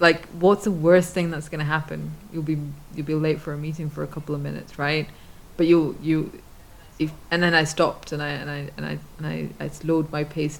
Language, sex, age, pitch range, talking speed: English, female, 20-39, 150-170 Hz, 240 wpm